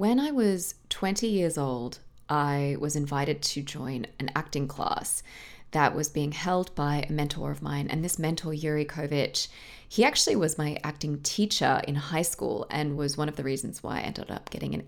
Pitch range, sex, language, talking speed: 145-190 Hz, female, English, 200 wpm